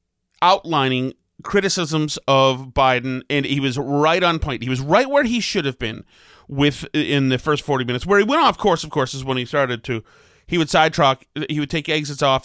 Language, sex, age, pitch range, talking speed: English, male, 30-49, 130-185 Hz, 210 wpm